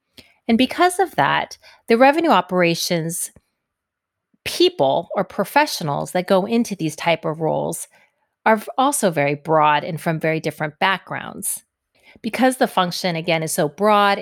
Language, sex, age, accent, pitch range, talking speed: English, female, 30-49, American, 165-225 Hz, 140 wpm